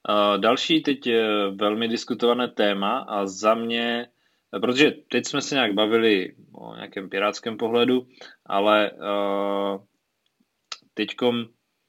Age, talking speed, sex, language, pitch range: 20-39, 100 wpm, male, Czech, 105-135 Hz